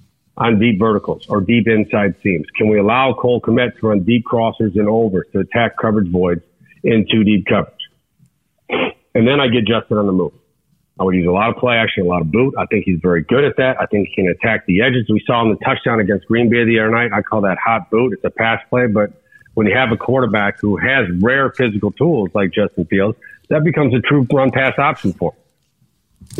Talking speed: 235 wpm